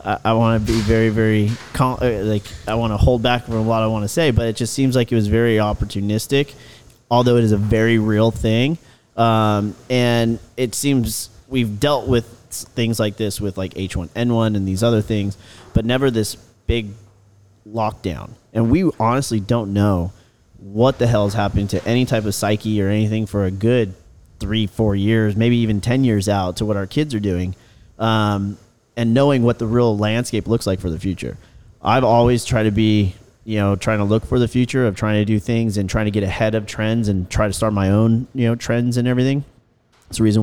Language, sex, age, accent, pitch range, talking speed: English, male, 30-49, American, 105-120 Hz, 210 wpm